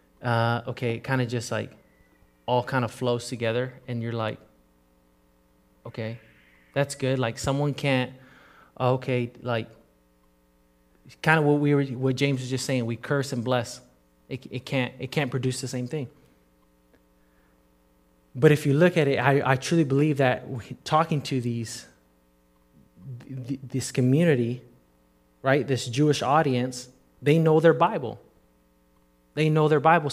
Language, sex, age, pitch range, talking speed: English, male, 20-39, 105-140 Hz, 145 wpm